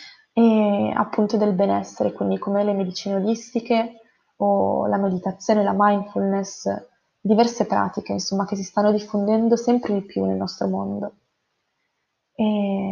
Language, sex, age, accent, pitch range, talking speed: Italian, female, 20-39, native, 195-220 Hz, 125 wpm